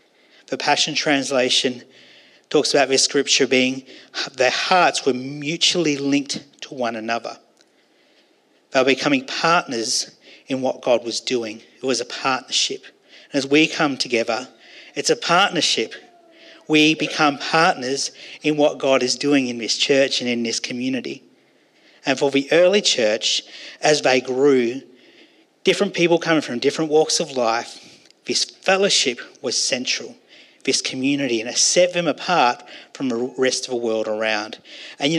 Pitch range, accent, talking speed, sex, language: 125-170 Hz, Australian, 150 wpm, male, English